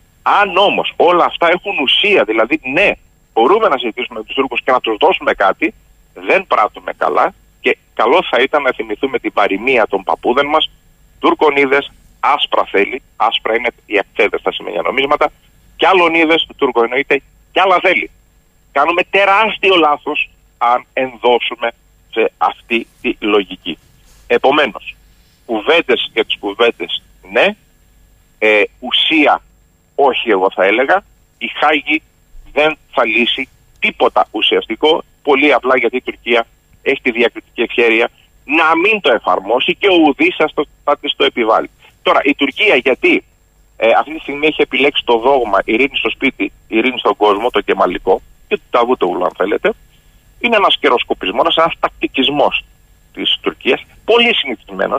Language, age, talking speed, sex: Greek, 40-59, 145 wpm, male